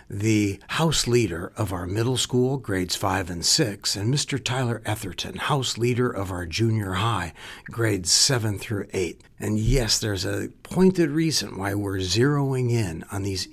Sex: male